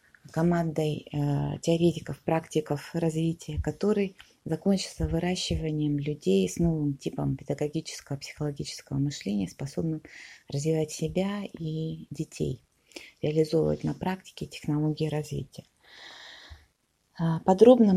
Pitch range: 150-185 Hz